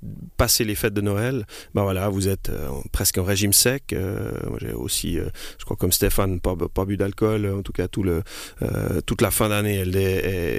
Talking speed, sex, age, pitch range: 240 wpm, male, 30-49, 95-110 Hz